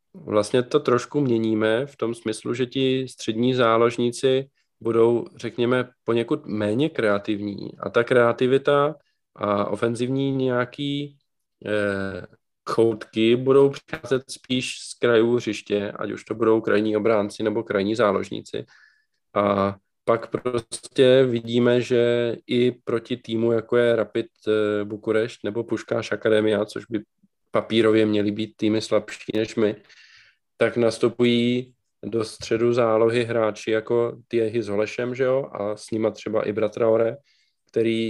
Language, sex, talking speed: Czech, male, 130 wpm